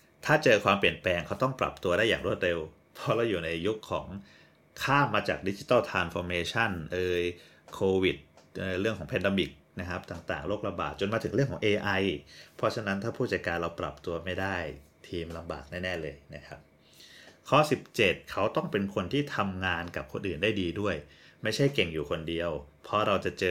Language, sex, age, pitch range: Thai, male, 30-49, 85-105 Hz